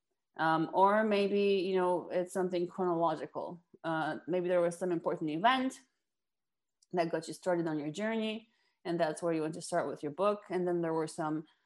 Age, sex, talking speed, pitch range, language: 20-39, female, 190 wpm, 170-215 Hz, English